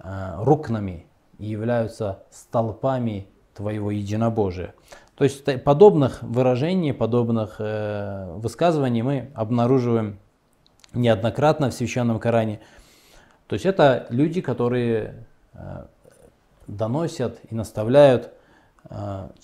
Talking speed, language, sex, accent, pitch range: 90 wpm, Russian, male, native, 105-130 Hz